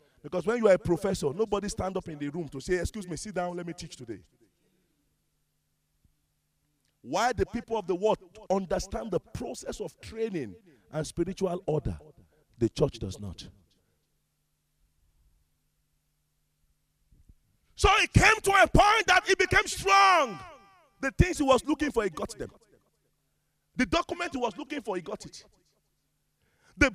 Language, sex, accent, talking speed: English, male, Nigerian, 155 wpm